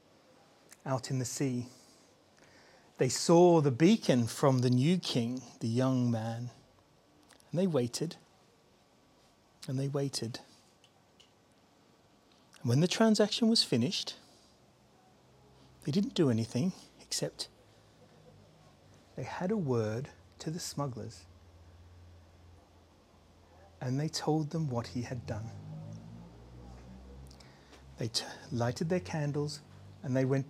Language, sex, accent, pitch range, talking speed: English, male, British, 115-150 Hz, 110 wpm